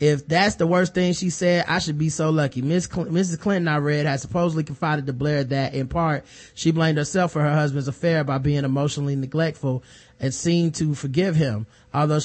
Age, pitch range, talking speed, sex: 30-49, 140-165 Hz, 200 wpm, male